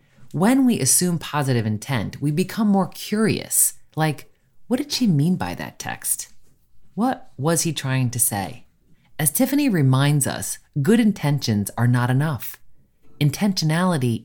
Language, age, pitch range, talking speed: English, 30-49, 120-170 Hz, 140 wpm